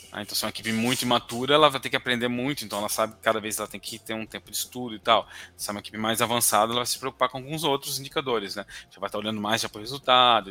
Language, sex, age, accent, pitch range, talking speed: Portuguese, male, 20-39, Brazilian, 100-125 Hz, 305 wpm